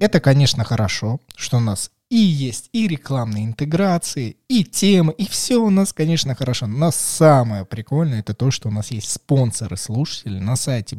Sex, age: male, 20-39